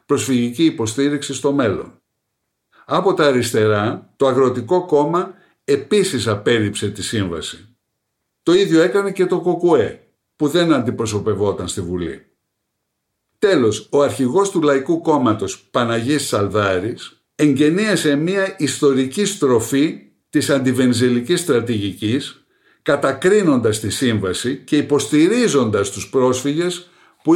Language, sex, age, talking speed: Greek, male, 60-79, 105 wpm